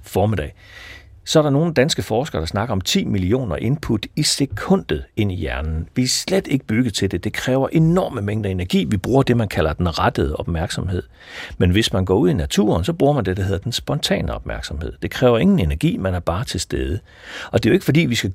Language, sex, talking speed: Danish, male, 230 wpm